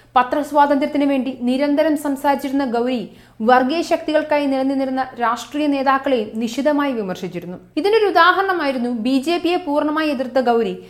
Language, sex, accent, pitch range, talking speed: Malayalam, female, native, 245-310 Hz, 115 wpm